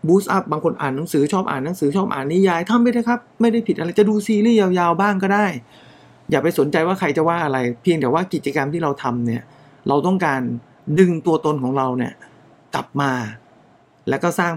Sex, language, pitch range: male, English, 130-175 Hz